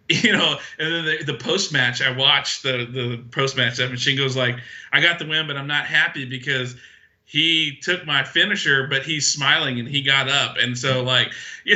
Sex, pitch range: male, 130-185 Hz